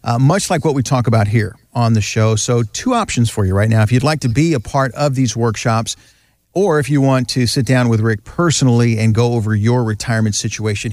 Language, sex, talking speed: English, male, 240 wpm